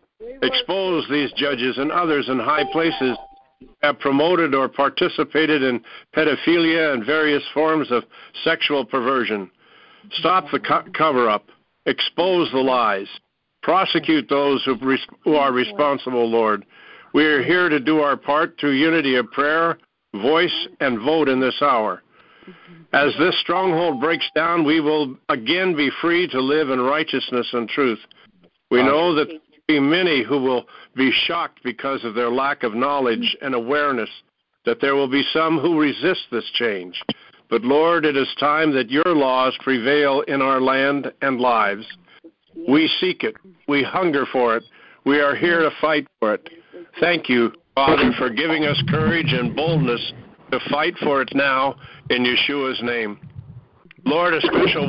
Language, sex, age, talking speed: English, male, 60-79, 150 wpm